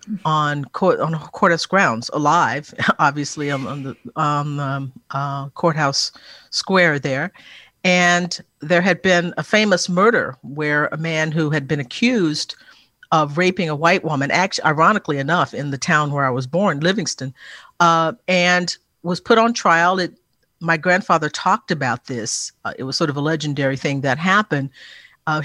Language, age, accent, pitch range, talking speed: English, 50-69, American, 145-180 Hz, 165 wpm